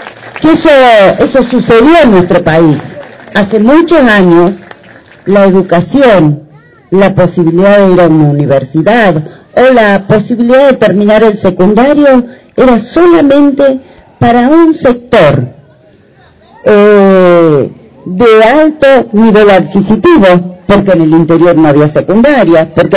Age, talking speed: 50-69, 110 wpm